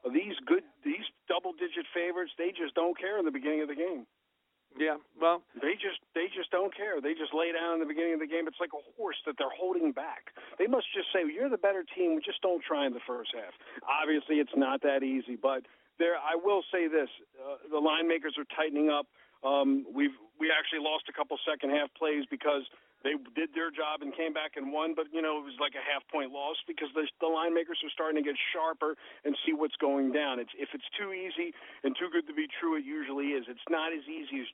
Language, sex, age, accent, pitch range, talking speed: English, male, 50-69, American, 145-180 Hz, 245 wpm